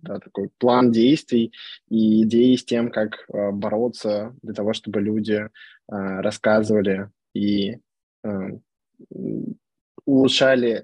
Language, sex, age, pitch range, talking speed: Russian, male, 20-39, 110-125 Hz, 90 wpm